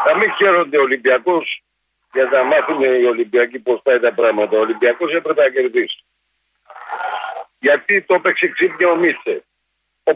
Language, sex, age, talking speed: Greek, male, 50-69, 160 wpm